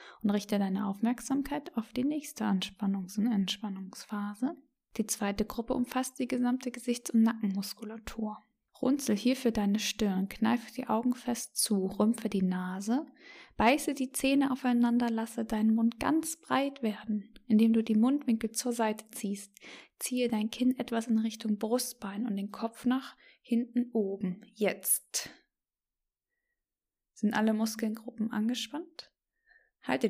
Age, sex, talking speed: 20-39, female, 135 wpm